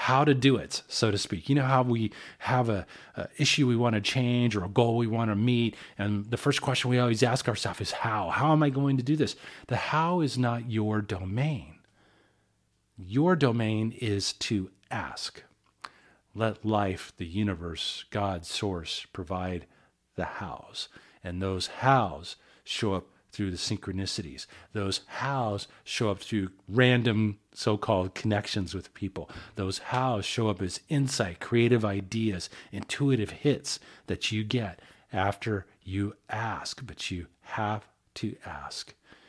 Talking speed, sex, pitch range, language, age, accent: 155 wpm, male, 95-120 Hz, English, 40-59, American